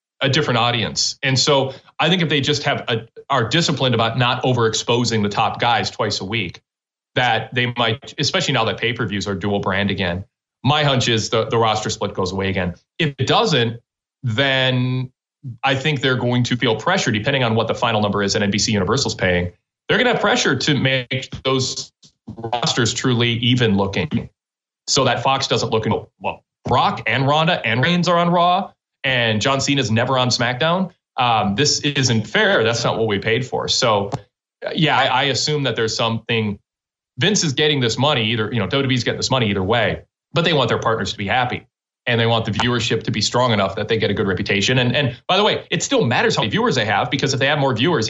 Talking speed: 220 wpm